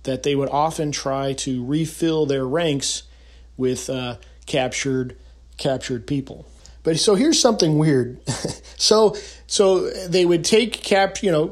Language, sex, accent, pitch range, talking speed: English, male, American, 150-205 Hz, 145 wpm